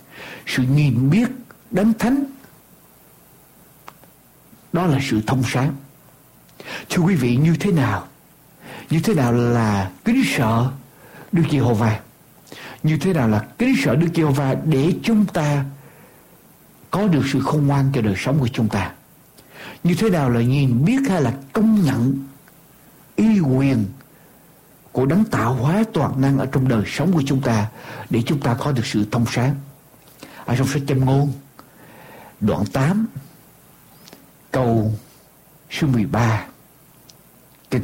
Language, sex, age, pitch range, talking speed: Vietnamese, male, 60-79, 120-170 Hz, 140 wpm